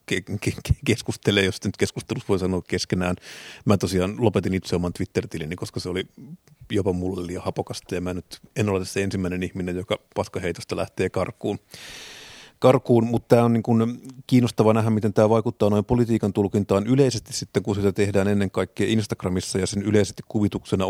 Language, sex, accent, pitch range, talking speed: Finnish, male, native, 95-110 Hz, 160 wpm